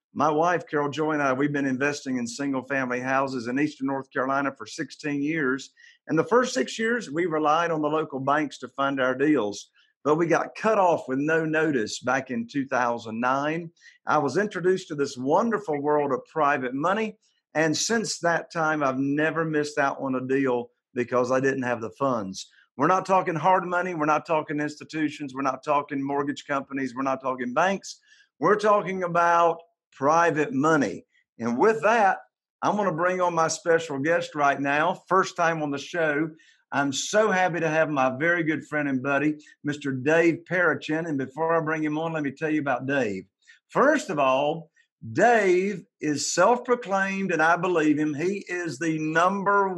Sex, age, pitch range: male, 50-69, 140-180 Hz